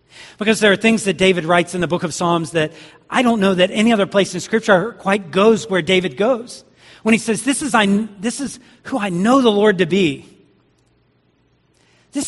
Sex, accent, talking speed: male, American, 210 wpm